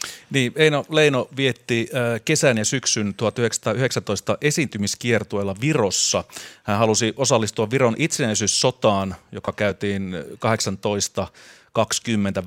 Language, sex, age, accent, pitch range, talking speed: Finnish, male, 30-49, native, 105-125 Hz, 80 wpm